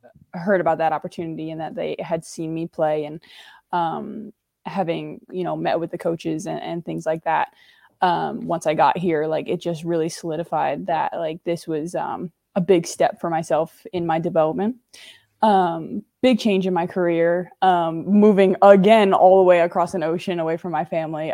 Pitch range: 165-185 Hz